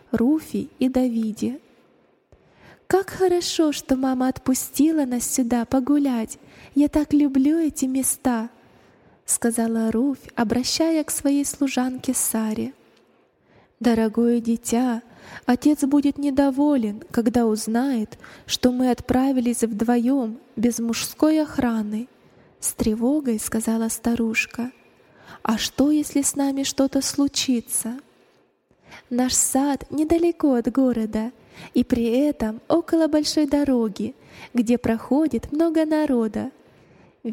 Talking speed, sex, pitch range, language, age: 105 wpm, female, 230-280 Hz, Russian, 20-39